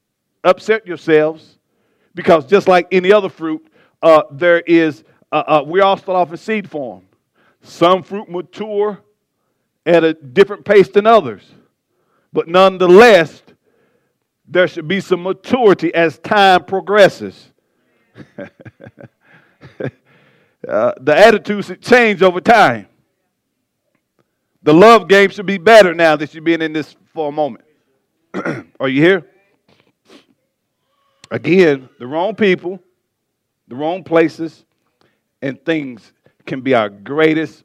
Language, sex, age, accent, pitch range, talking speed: English, male, 40-59, American, 140-190 Hz, 125 wpm